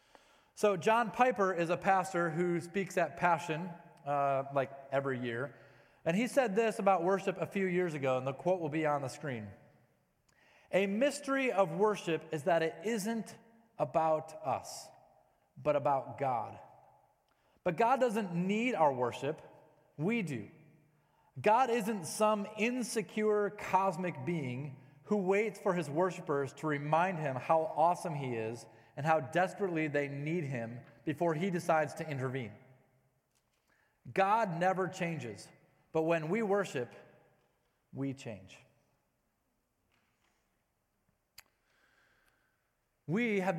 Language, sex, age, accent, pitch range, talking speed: English, male, 30-49, American, 145-195 Hz, 130 wpm